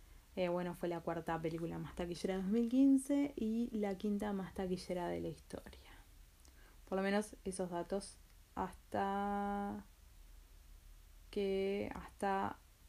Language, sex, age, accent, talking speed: Spanish, female, 20-39, Argentinian, 120 wpm